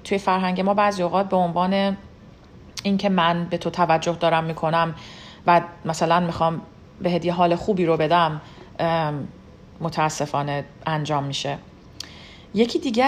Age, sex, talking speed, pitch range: 40-59, female, 130 wpm, 170-215 Hz